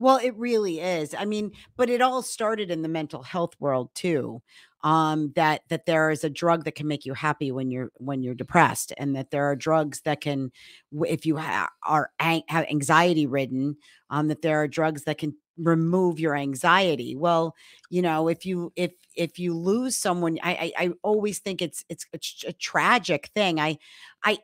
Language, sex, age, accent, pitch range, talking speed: English, female, 50-69, American, 150-180 Hz, 200 wpm